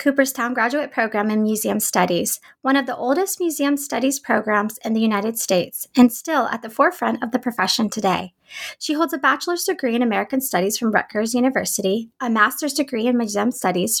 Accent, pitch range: American, 210-260 Hz